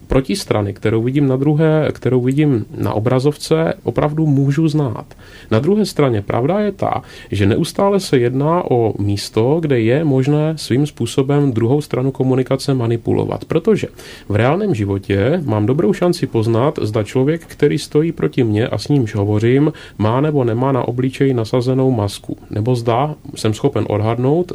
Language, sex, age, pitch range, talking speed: Czech, male, 30-49, 110-145 Hz, 155 wpm